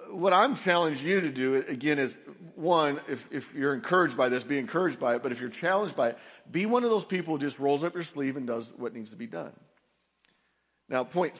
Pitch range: 130-175 Hz